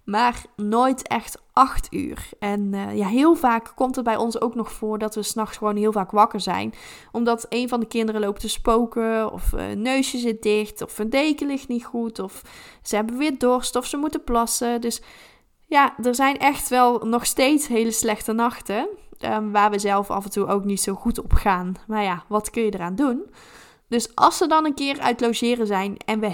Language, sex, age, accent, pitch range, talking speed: Dutch, female, 10-29, Dutch, 210-260 Hz, 220 wpm